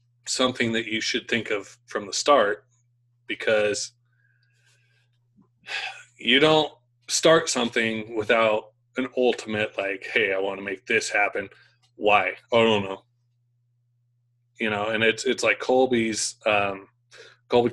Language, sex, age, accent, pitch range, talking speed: English, male, 20-39, American, 110-120 Hz, 130 wpm